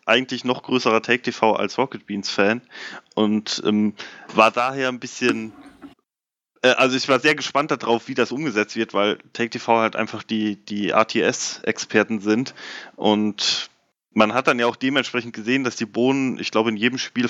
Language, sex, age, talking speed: German, male, 20-39, 175 wpm